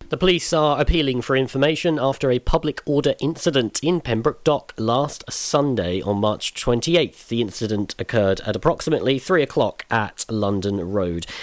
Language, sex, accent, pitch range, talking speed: English, male, British, 105-135 Hz, 150 wpm